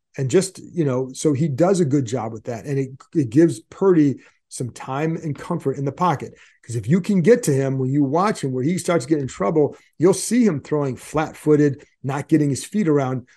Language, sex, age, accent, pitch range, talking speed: English, male, 40-59, American, 135-170 Hz, 230 wpm